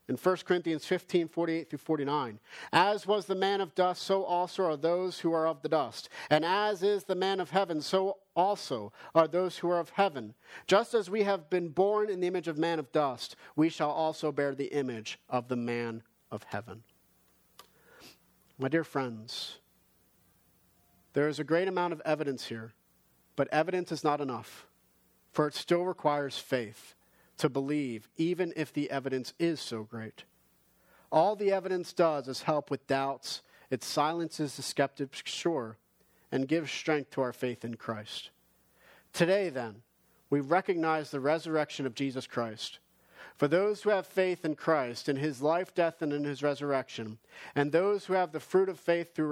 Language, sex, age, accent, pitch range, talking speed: English, male, 40-59, American, 135-175 Hz, 175 wpm